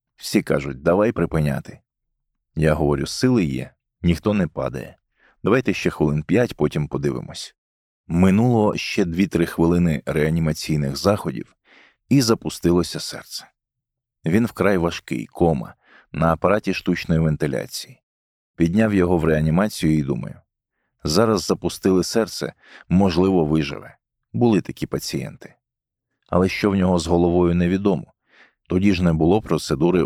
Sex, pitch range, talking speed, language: male, 75-95 Hz, 120 wpm, English